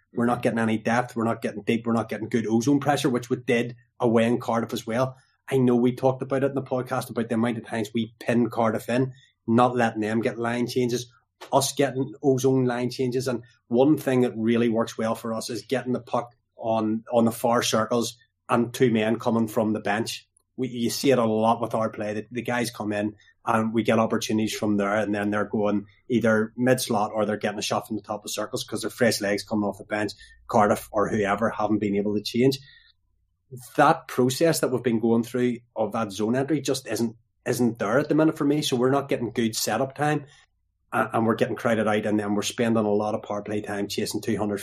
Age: 20-39